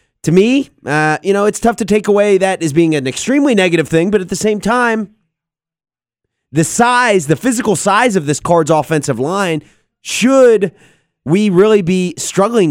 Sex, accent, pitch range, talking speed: male, American, 130-180 Hz, 175 wpm